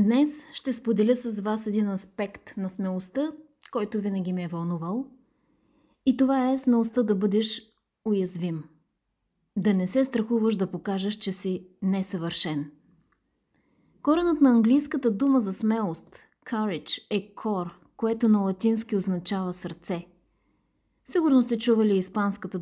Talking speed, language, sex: 125 wpm, Bulgarian, female